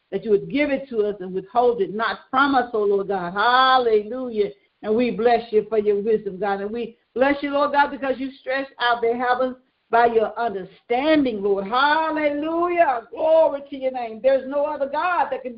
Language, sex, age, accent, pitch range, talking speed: English, female, 50-69, American, 220-285 Hz, 200 wpm